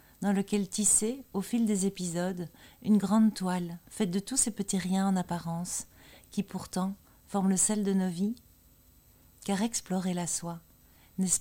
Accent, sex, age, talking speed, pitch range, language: French, female, 40-59, 165 wpm, 175-210 Hz, French